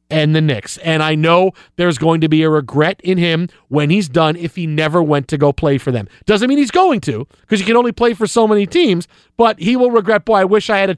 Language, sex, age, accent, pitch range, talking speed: English, male, 40-59, American, 155-210 Hz, 275 wpm